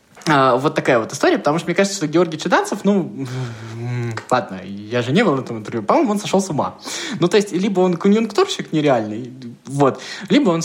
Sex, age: male, 20-39